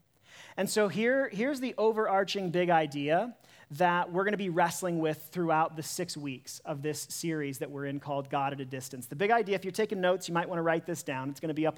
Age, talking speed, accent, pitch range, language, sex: 40-59, 245 wpm, American, 145-195 Hz, English, male